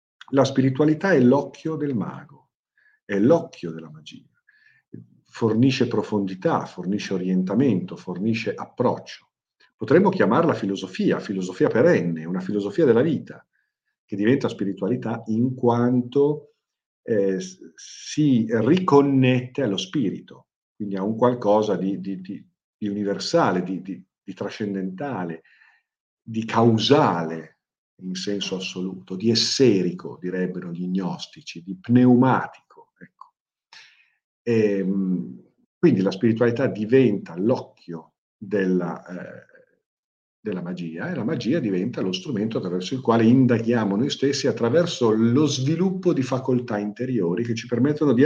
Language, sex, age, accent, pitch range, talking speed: Italian, male, 50-69, native, 95-135 Hz, 110 wpm